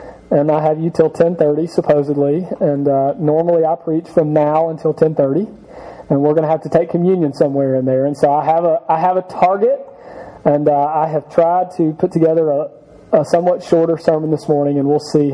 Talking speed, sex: 220 wpm, male